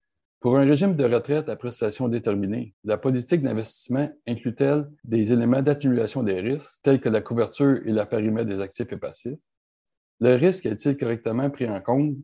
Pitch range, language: 110-140 Hz, English